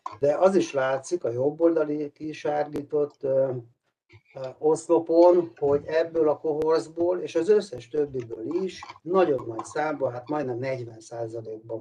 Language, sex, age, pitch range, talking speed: Hungarian, male, 60-79, 115-150 Hz, 115 wpm